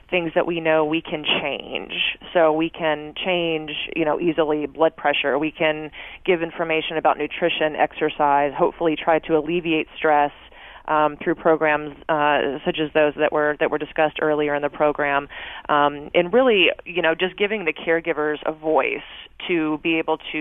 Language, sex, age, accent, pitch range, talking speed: English, female, 30-49, American, 150-165 Hz, 175 wpm